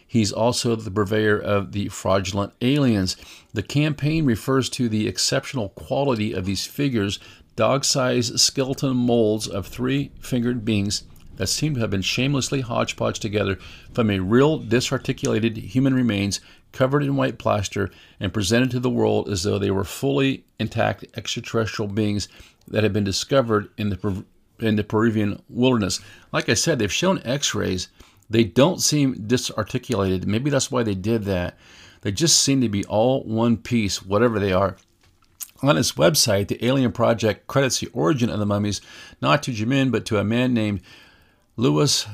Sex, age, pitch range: male, 50-69, 100-125 Hz